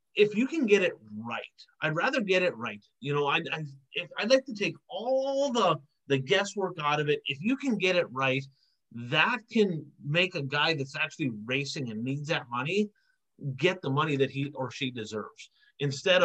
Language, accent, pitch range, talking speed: English, American, 140-200 Hz, 200 wpm